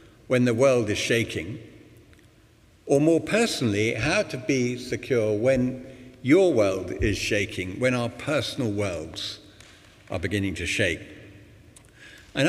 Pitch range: 105-135 Hz